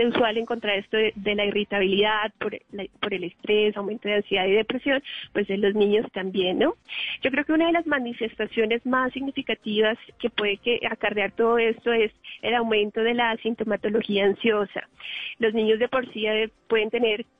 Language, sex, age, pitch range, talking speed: Spanish, female, 30-49, 210-235 Hz, 195 wpm